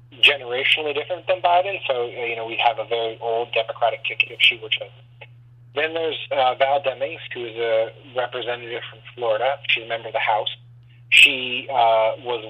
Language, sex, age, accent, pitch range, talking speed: English, male, 30-49, American, 115-125 Hz, 180 wpm